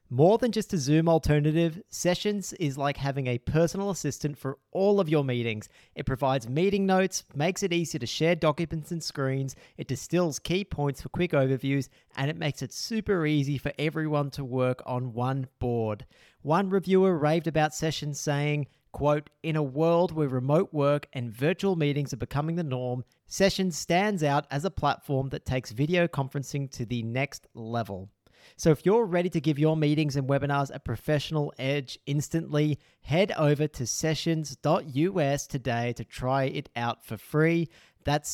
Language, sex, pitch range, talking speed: English, male, 130-165 Hz, 170 wpm